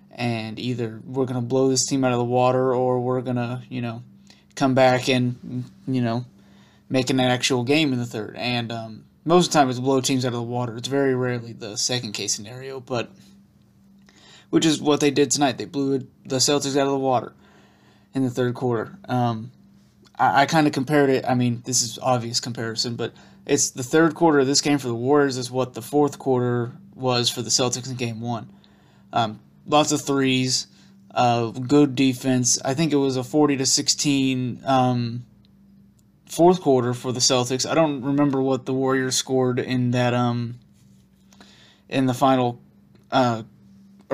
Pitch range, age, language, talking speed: 120-135 Hz, 20-39, English, 190 wpm